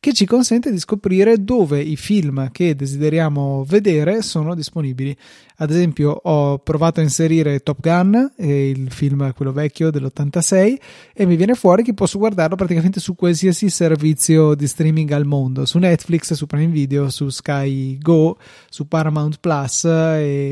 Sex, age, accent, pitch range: male, 30-49, native, 145-175 Hz